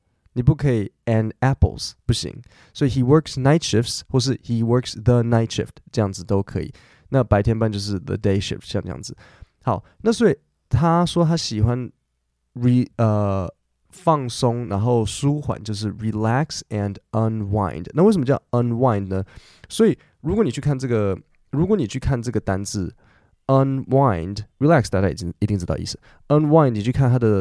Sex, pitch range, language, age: male, 100-135 Hz, Chinese, 20-39